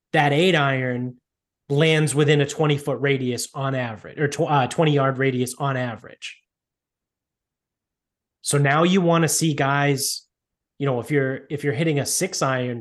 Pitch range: 130-160 Hz